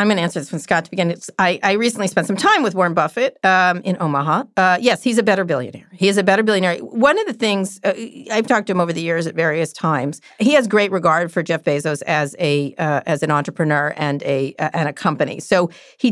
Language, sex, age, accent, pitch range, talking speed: English, female, 40-59, American, 155-200 Hz, 255 wpm